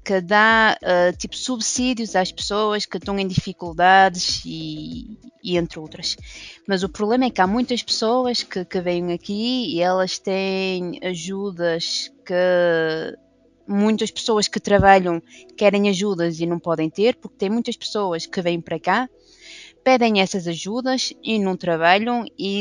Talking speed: 150 wpm